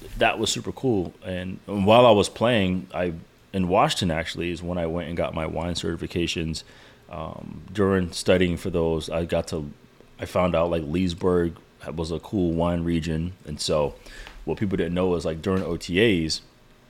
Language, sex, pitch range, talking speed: English, male, 80-95 Hz, 180 wpm